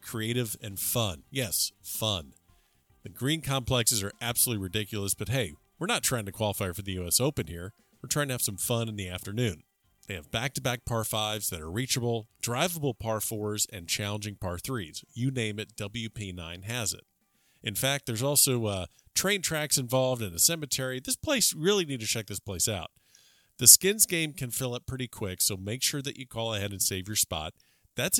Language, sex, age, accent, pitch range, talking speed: English, male, 40-59, American, 100-130 Hz, 200 wpm